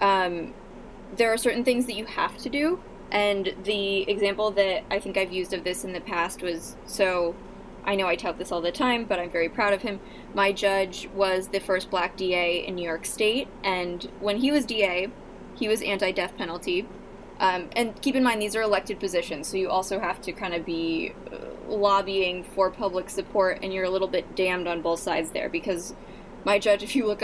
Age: 20-39